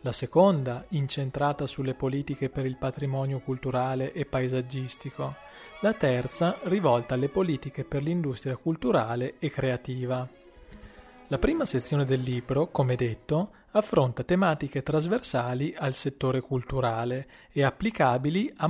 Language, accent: Italian, native